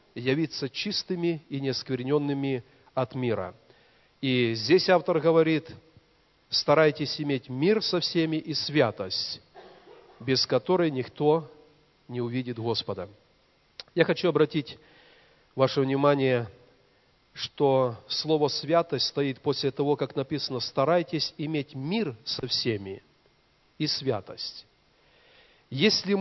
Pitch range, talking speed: 130-160 Hz, 100 wpm